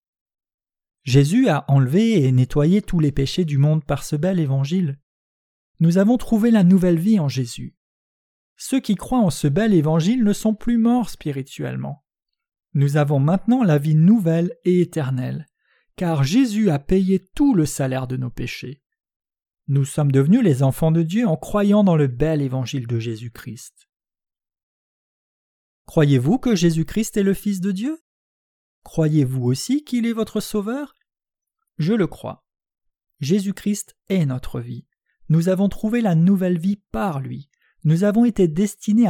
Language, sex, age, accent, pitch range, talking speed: French, male, 40-59, French, 140-210 Hz, 155 wpm